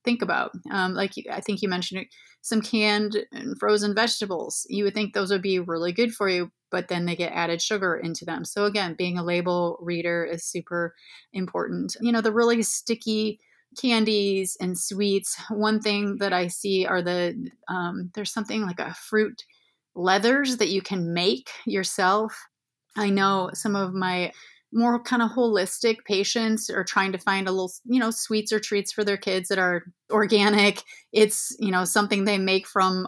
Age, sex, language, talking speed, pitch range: 30-49, female, English, 185 wpm, 185-220 Hz